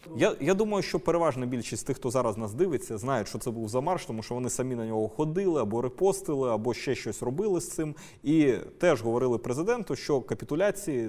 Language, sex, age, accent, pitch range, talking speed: Ukrainian, male, 20-39, native, 120-175 Hz, 205 wpm